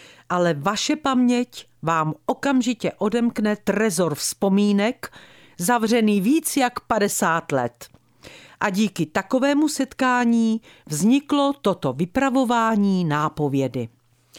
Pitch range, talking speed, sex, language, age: 155-240 Hz, 90 wpm, female, Czech, 50-69